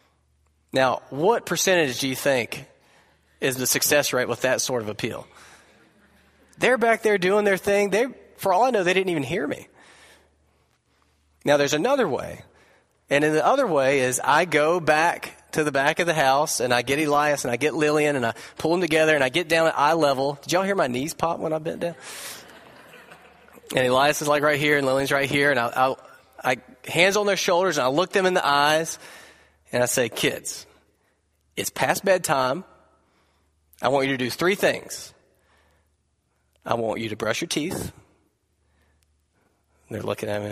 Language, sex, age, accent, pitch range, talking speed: English, male, 20-39, American, 105-155 Hz, 195 wpm